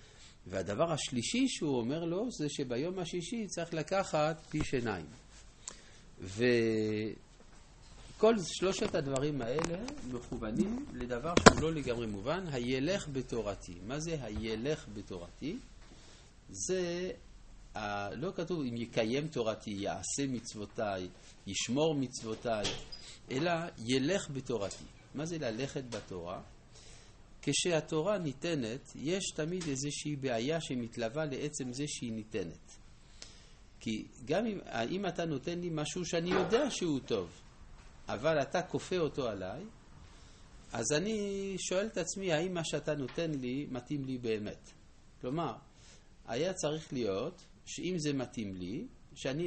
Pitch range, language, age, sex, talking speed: 115-165 Hz, Hebrew, 50-69, male, 115 wpm